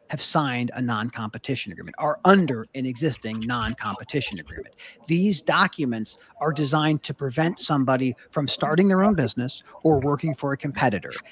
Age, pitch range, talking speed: 40-59, 130-170 Hz, 150 wpm